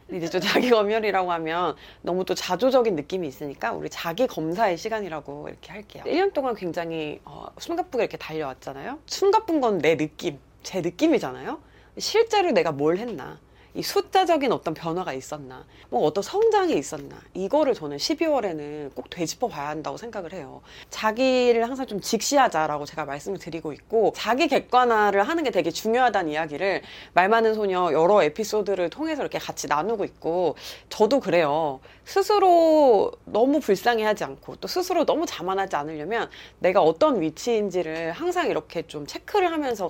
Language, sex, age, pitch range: Korean, female, 30-49, 160-265 Hz